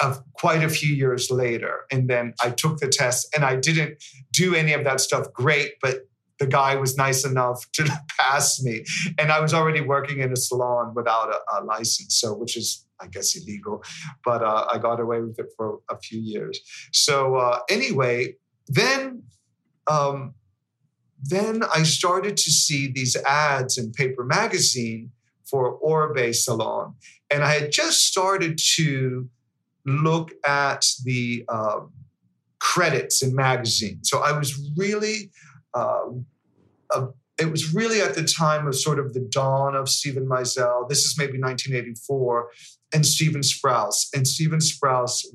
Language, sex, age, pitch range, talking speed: English, male, 50-69, 120-150 Hz, 160 wpm